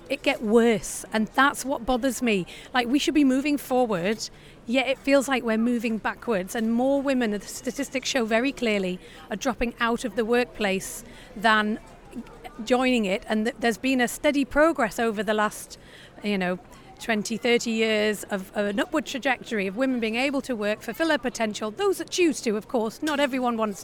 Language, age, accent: English, 40-59, British